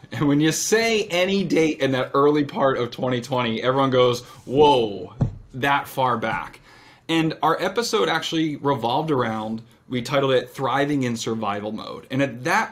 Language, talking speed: English, 160 wpm